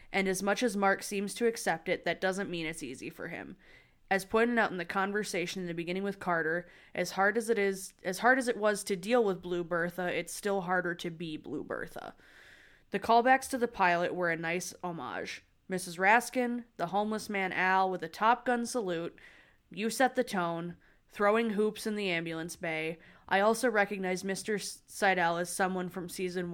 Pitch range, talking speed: 175-215 Hz, 200 wpm